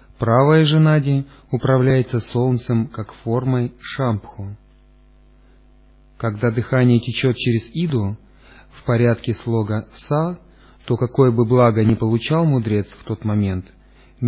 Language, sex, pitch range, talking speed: Russian, male, 110-135 Hz, 120 wpm